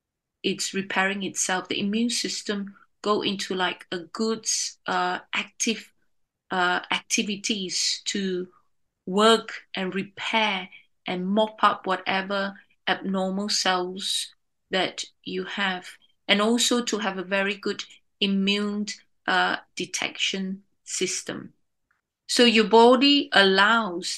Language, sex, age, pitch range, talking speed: English, female, 30-49, 190-230 Hz, 105 wpm